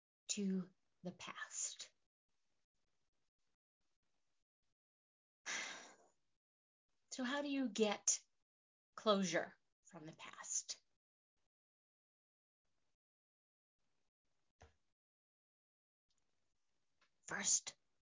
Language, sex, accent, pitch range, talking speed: English, female, American, 200-265 Hz, 45 wpm